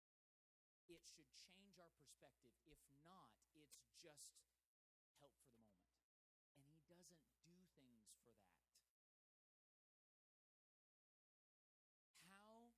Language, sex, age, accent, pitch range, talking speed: English, male, 40-59, American, 140-185 Hz, 95 wpm